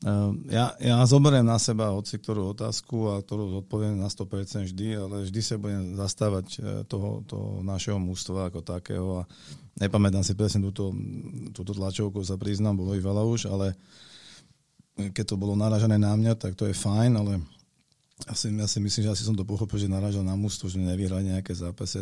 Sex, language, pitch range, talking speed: male, Slovak, 95-110 Hz, 185 wpm